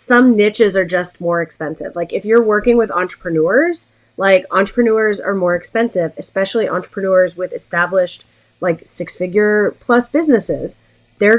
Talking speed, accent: 140 wpm, American